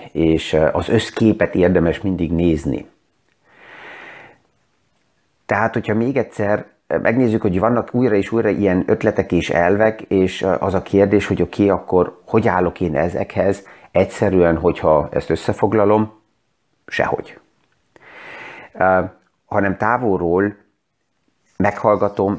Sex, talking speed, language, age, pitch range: male, 105 wpm, Hungarian, 30-49, 90-105 Hz